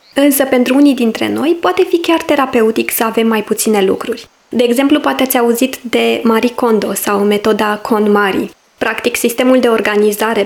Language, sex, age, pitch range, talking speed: Romanian, female, 20-39, 215-275 Hz, 165 wpm